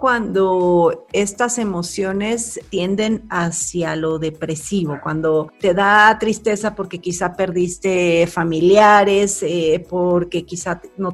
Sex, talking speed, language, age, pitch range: female, 100 wpm, Spanish, 40-59, 175-220 Hz